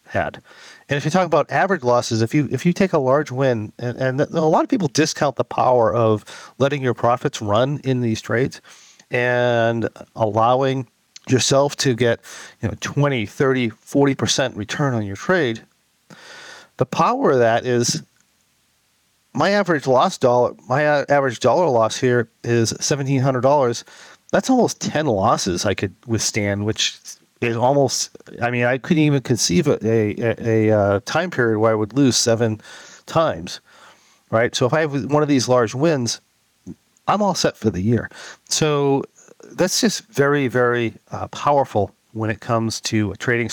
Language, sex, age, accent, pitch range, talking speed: English, male, 40-59, American, 110-140 Hz, 165 wpm